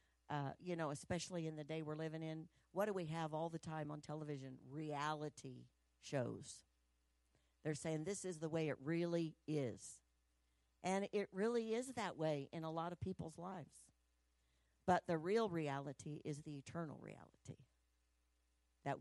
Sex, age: female, 50-69